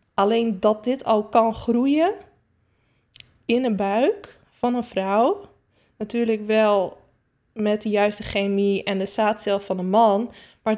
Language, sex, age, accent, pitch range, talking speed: Dutch, female, 20-39, Dutch, 210-240 Hz, 140 wpm